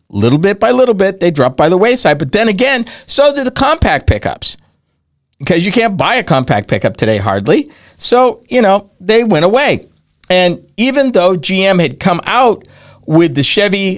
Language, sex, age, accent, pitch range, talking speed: English, male, 50-69, American, 155-225 Hz, 185 wpm